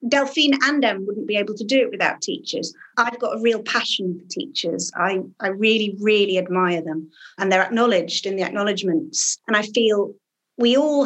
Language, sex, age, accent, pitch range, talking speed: English, female, 40-59, British, 185-225 Hz, 190 wpm